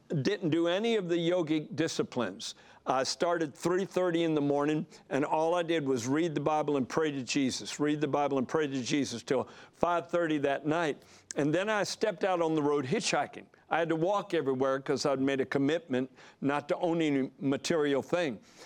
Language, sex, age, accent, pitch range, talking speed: English, male, 60-79, American, 145-175 Hz, 195 wpm